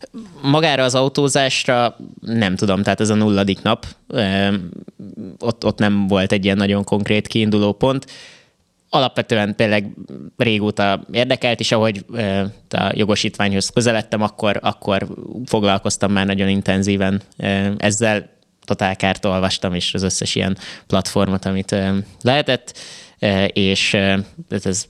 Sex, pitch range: male, 95-115 Hz